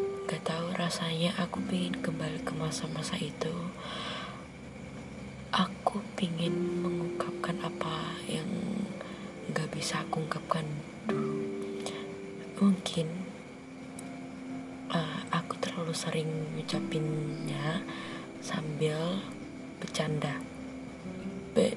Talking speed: 75 wpm